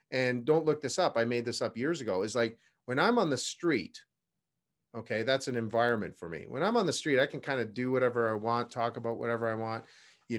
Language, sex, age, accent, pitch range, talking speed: English, male, 40-59, American, 115-150 Hz, 250 wpm